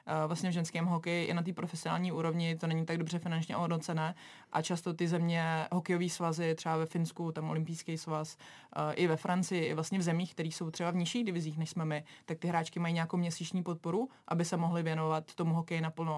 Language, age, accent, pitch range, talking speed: Czech, 20-39, native, 160-170 Hz, 210 wpm